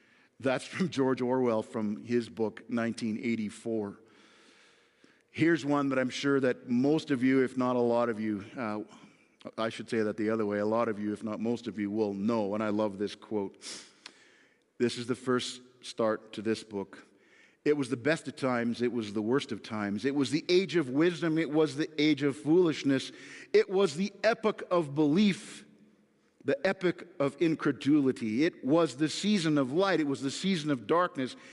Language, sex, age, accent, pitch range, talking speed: English, male, 50-69, American, 115-160 Hz, 190 wpm